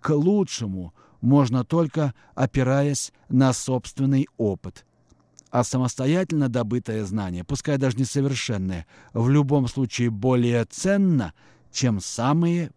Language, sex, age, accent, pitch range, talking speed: Russian, male, 50-69, native, 105-130 Hz, 105 wpm